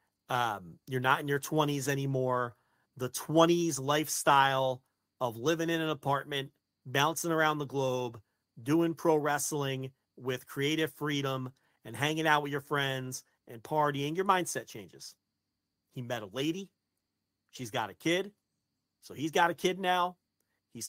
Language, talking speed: English, 145 wpm